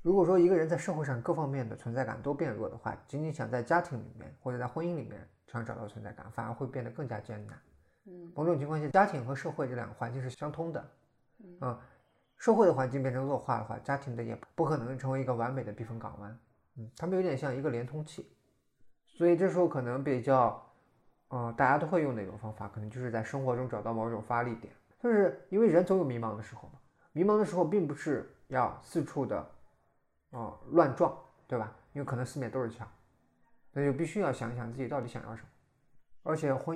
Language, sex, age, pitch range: Chinese, male, 20-39, 115-150 Hz